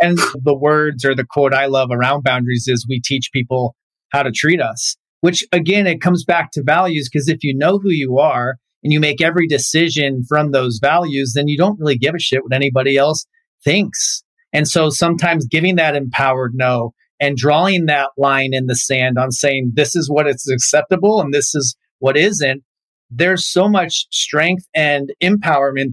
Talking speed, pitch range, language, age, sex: 190 wpm, 135-170 Hz, English, 40-59, male